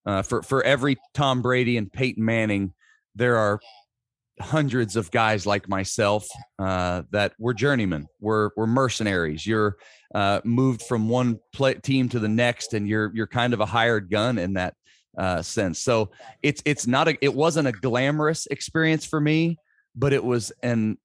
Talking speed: 175 wpm